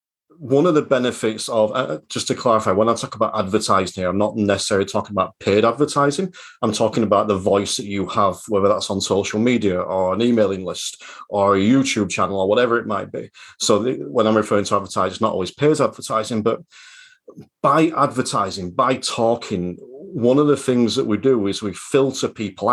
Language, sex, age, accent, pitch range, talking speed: English, male, 40-59, British, 100-135 Hz, 200 wpm